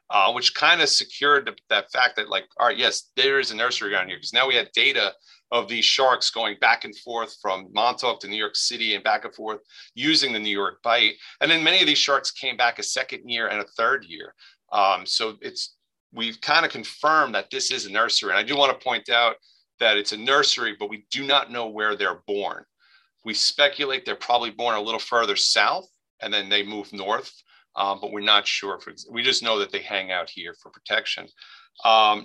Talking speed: 225 wpm